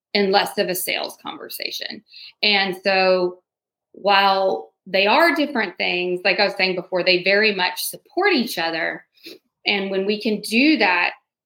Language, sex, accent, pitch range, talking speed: English, female, American, 180-215 Hz, 155 wpm